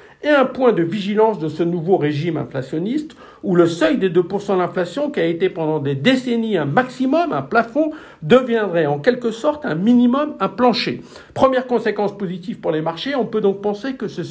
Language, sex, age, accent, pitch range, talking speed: French, male, 60-79, French, 170-245 Hz, 195 wpm